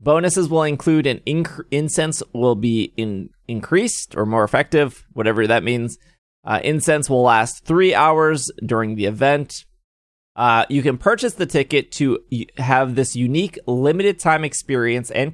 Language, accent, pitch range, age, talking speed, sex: English, American, 115-155 Hz, 20-39, 155 wpm, male